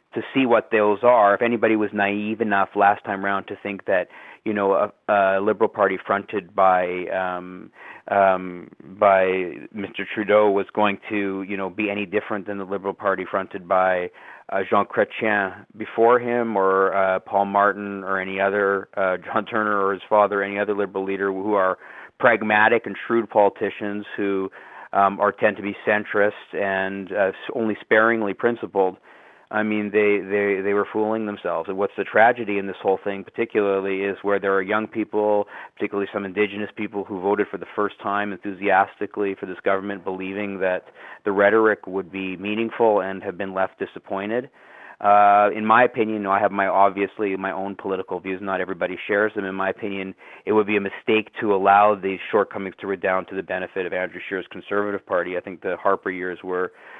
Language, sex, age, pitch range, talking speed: English, male, 40-59, 95-105 Hz, 185 wpm